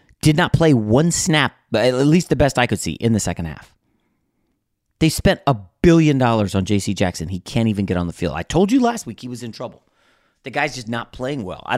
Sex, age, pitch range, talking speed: male, 30-49, 95-125 Hz, 245 wpm